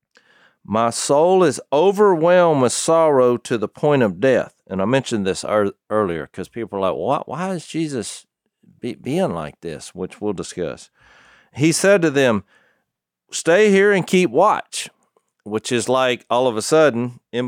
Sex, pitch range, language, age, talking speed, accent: male, 105-130 Hz, English, 40-59, 165 wpm, American